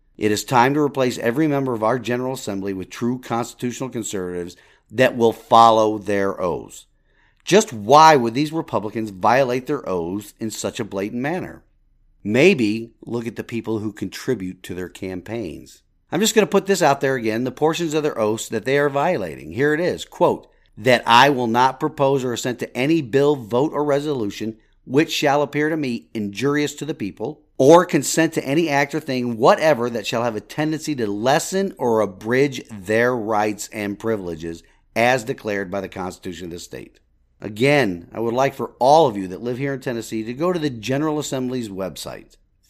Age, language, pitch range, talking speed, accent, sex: 50-69, English, 110-145 Hz, 190 wpm, American, male